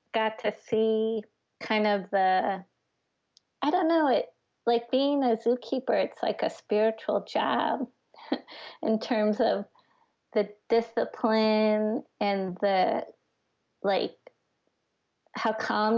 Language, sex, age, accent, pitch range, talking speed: English, female, 20-39, American, 200-230 Hz, 110 wpm